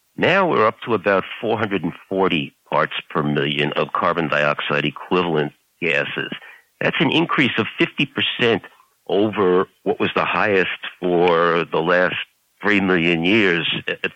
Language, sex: English, male